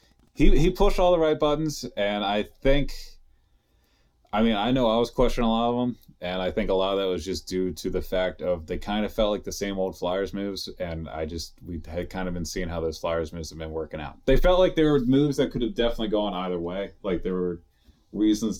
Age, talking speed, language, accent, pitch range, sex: 30-49, 255 wpm, English, American, 85-105 Hz, male